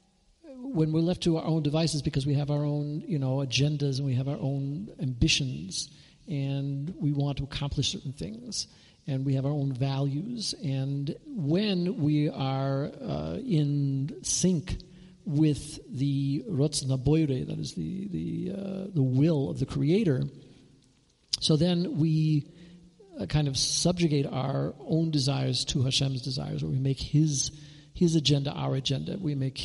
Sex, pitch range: male, 140-170 Hz